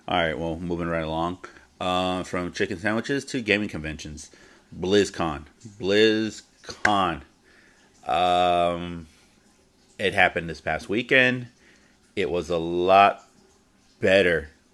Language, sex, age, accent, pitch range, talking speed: English, male, 30-49, American, 80-100 Hz, 100 wpm